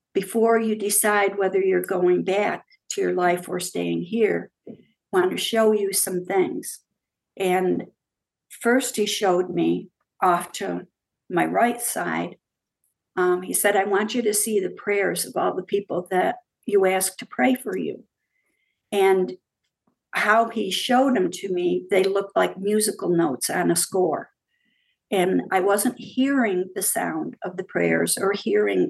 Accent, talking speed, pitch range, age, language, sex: American, 160 wpm, 185-230 Hz, 60-79, English, female